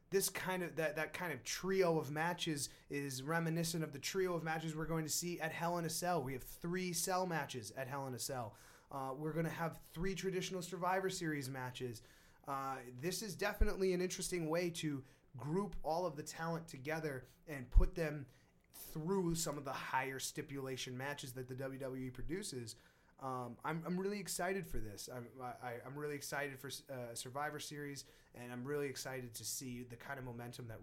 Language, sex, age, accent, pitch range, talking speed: English, male, 30-49, American, 125-170 Hz, 195 wpm